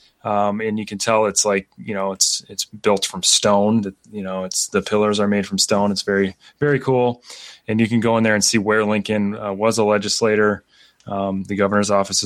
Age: 20-39